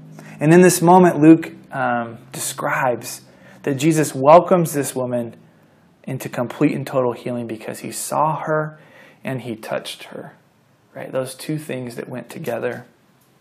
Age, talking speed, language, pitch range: 20-39, 145 wpm, English, 140-170 Hz